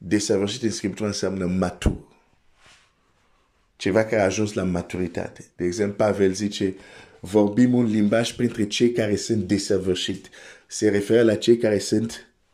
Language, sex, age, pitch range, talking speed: Romanian, male, 50-69, 100-115 Hz, 110 wpm